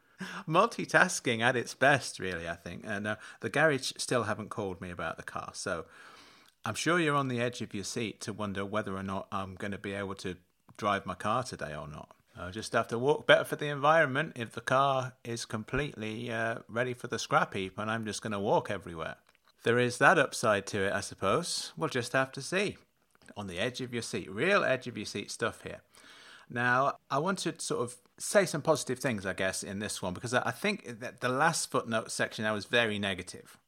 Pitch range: 100-130 Hz